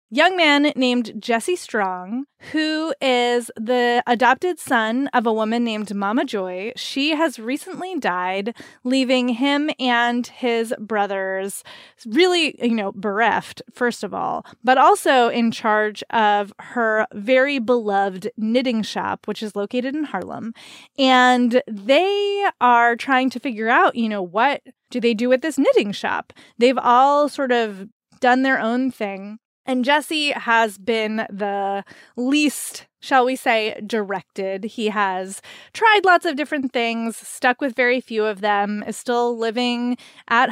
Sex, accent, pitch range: female, American, 215-265 Hz